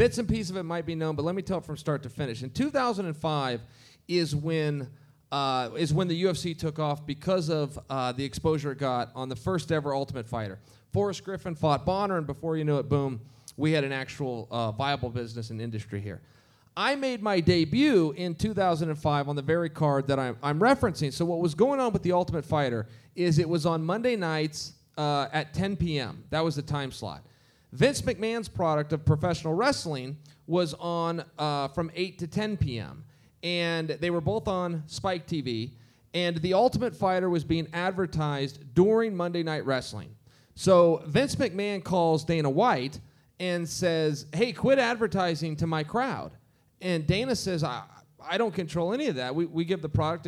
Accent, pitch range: American, 140-180 Hz